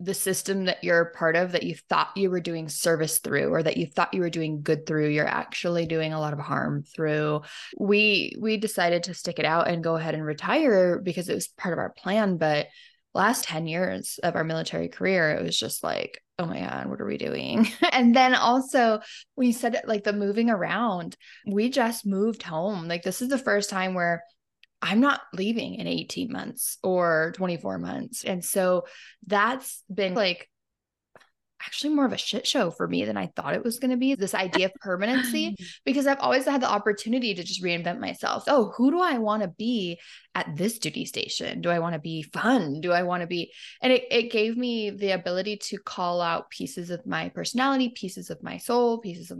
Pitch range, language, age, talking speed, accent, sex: 175-235 Hz, English, 20-39, 215 wpm, American, female